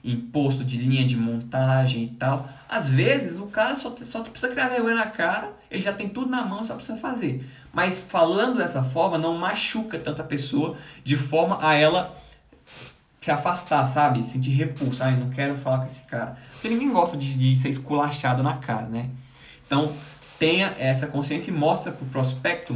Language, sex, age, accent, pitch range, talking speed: Portuguese, male, 20-39, Brazilian, 130-190 Hz, 185 wpm